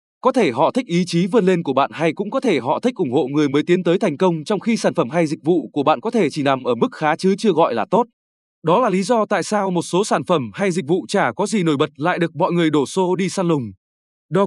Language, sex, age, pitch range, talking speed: Vietnamese, male, 20-39, 150-205 Hz, 305 wpm